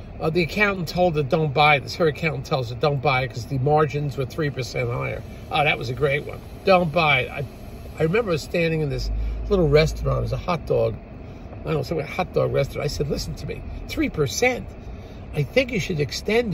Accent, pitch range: American, 110-165 Hz